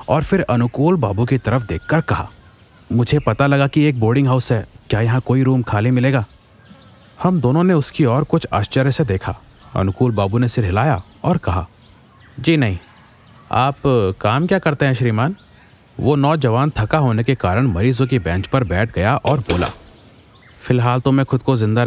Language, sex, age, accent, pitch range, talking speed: Hindi, male, 30-49, native, 105-130 Hz, 180 wpm